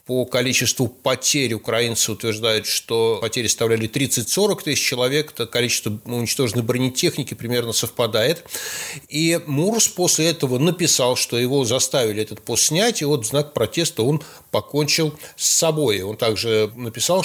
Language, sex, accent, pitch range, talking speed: Russian, male, native, 125-155 Hz, 135 wpm